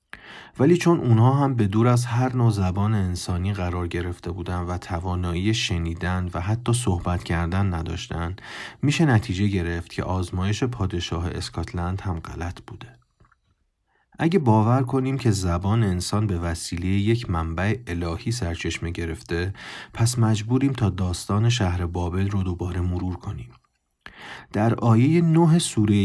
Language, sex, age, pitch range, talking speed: Persian, male, 30-49, 90-115 Hz, 135 wpm